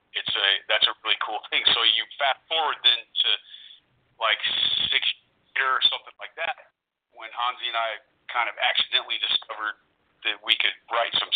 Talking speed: 175 wpm